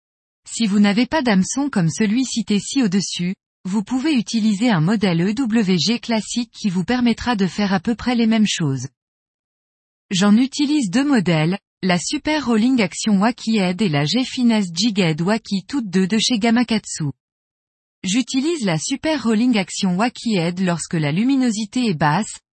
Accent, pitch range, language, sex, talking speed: French, 185-245 Hz, French, female, 165 wpm